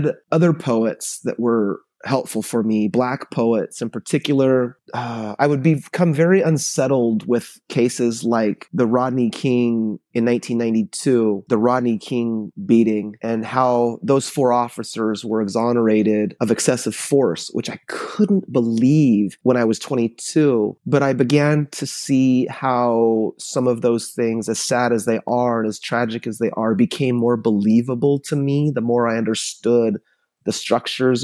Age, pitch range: 30-49, 110-135 Hz